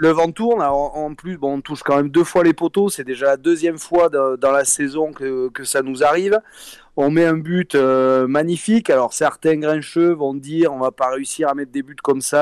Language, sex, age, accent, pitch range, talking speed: French, male, 30-49, French, 140-170 Hz, 230 wpm